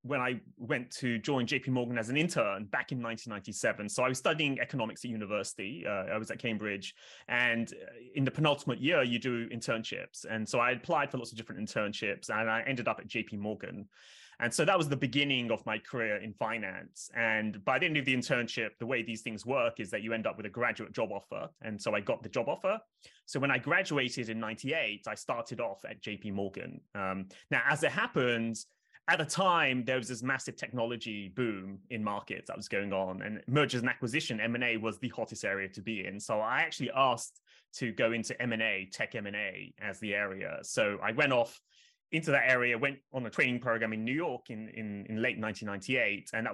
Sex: male